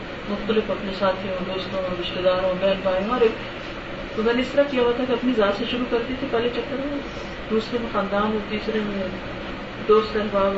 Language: Urdu